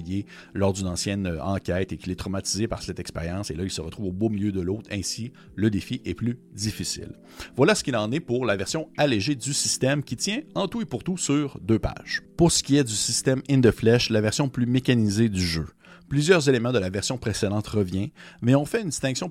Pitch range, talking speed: 100-135 Hz, 235 wpm